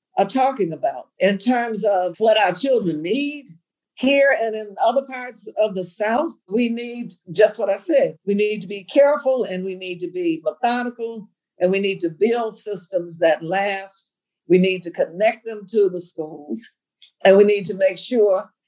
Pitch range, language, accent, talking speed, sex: 175-230 Hz, English, American, 185 wpm, female